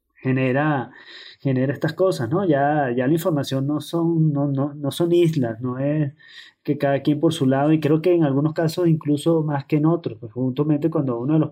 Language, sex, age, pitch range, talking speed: Spanish, male, 20-39, 130-160 Hz, 215 wpm